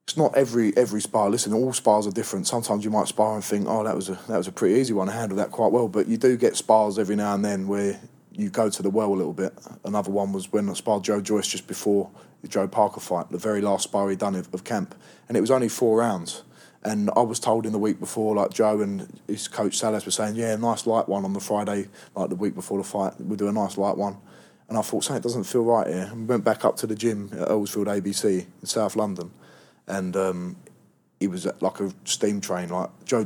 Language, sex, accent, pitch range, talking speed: English, male, British, 95-110 Hz, 260 wpm